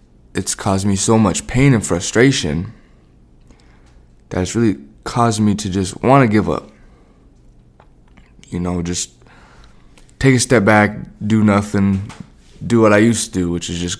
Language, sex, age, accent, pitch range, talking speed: English, male, 20-39, American, 85-100 Hz, 160 wpm